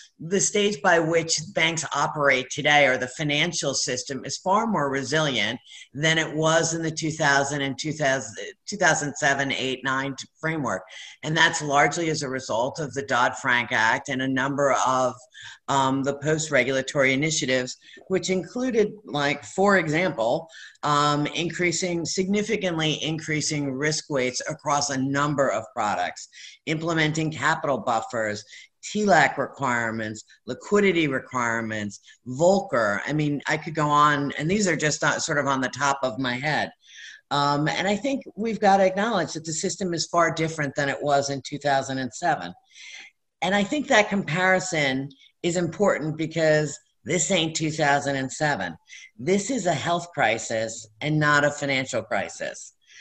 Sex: female